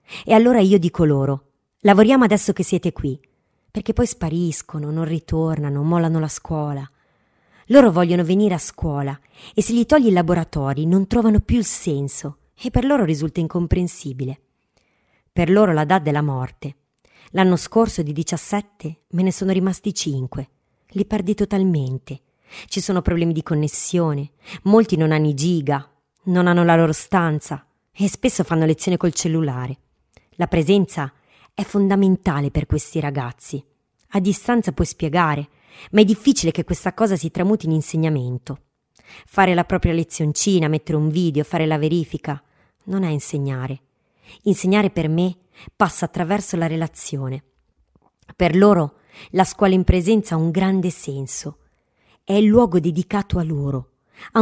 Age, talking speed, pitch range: 30-49, 150 wpm, 150-195 Hz